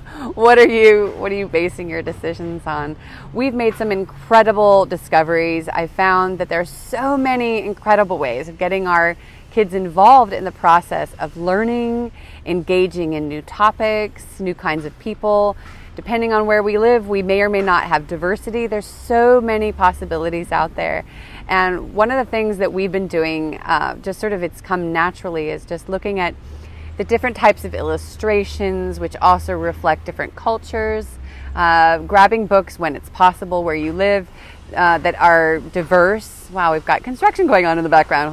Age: 30-49